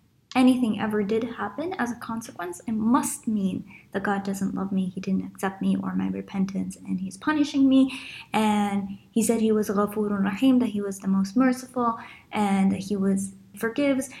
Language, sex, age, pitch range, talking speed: English, female, 10-29, 200-245 Hz, 180 wpm